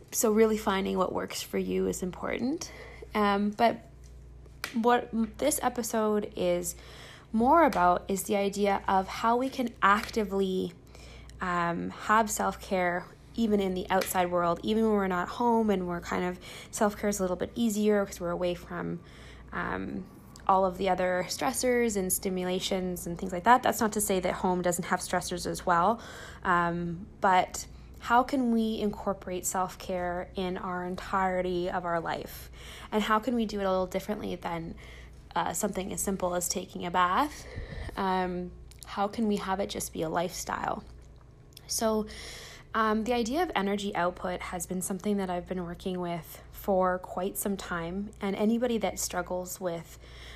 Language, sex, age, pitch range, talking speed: English, female, 20-39, 180-215 Hz, 165 wpm